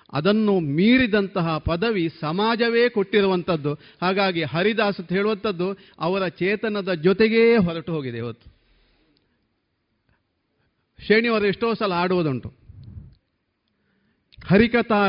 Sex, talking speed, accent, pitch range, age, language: male, 75 wpm, native, 160-200 Hz, 50-69, Kannada